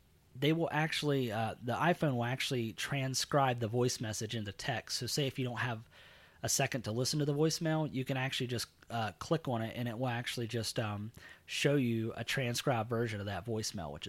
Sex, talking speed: male, 215 wpm